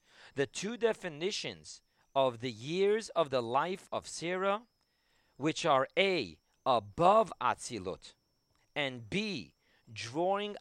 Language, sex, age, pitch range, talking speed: English, male, 40-59, 125-180 Hz, 105 wpm